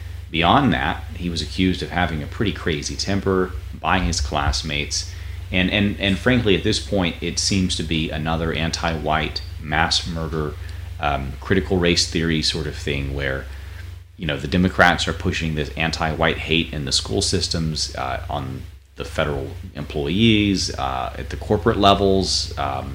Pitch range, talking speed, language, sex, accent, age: 75-90 Hz, 160 wpm, English, male, American, 30-49